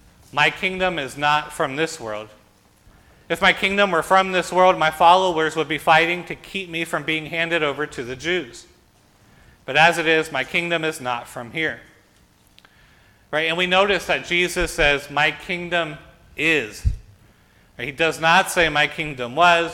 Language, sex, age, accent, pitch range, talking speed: English, male, 40-59, American, 145-175 Hz, 170 wpm